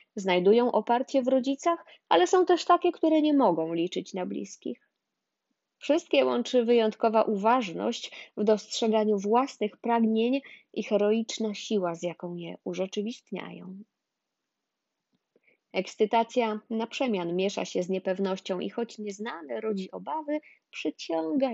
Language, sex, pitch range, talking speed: Polish, female, 190-240 Hz, 115 wpm